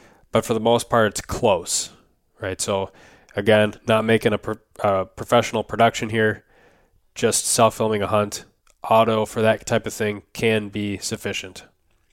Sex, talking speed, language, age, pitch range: male, 150 wpm, English, 20-39, 100-115 Hz